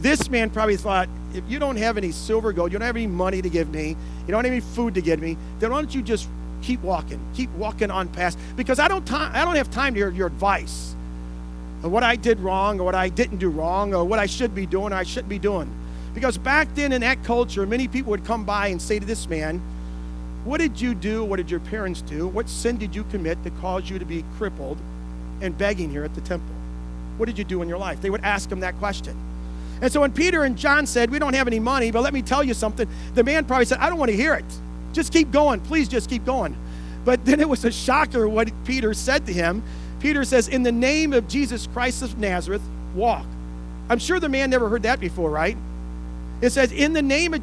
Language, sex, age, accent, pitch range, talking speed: English, male, 40-59, American, 155-260 Hz, 255 wpm